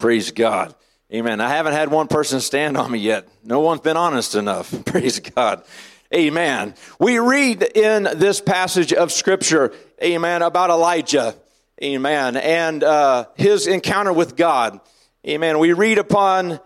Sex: male